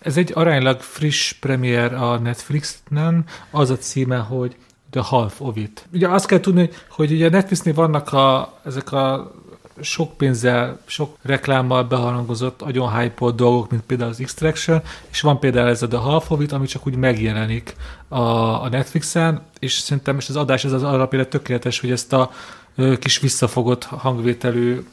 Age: 30-49